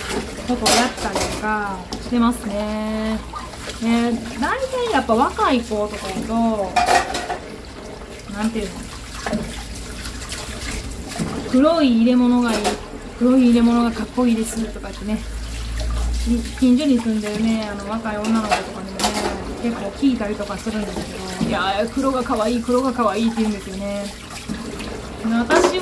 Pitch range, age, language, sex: 210-250 Hz, 20-39, Japanese, female